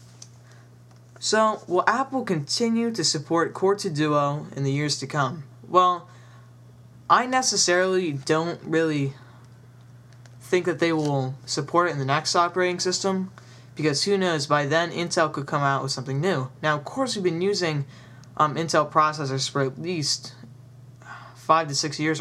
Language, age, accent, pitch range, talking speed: English, 10-29, American, 125-165 Hz, 155 wpm